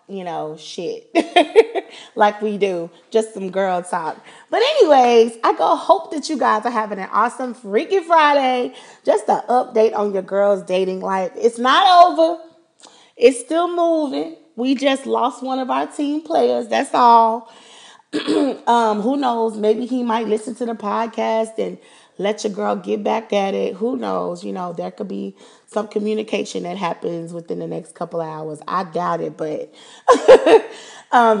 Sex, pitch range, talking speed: female, 170-235 Hz, 170 wpm